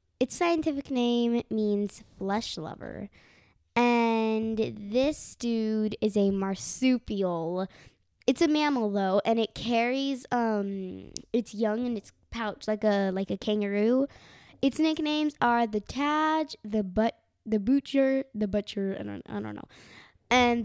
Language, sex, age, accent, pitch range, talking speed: English, female, 10-29, American, 205-265 Hz, 135 wpm